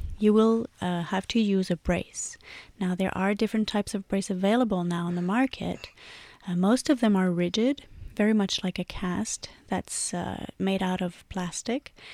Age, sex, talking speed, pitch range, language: 30-49, female, 185 wpm, 185-215 Hz, English